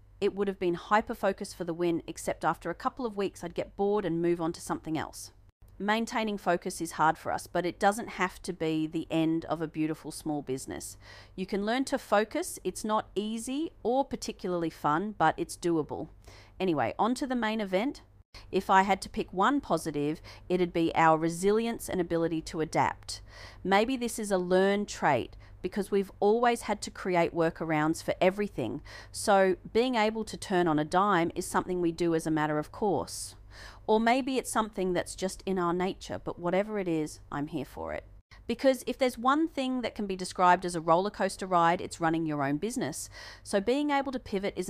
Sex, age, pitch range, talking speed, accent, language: female, 40-59, 160-210 Hz, 205 wpm, Australian, English